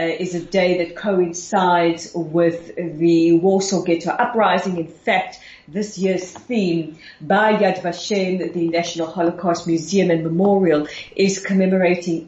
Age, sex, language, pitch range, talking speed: 40-59, female, English, 170-190 Hz, 125 wpm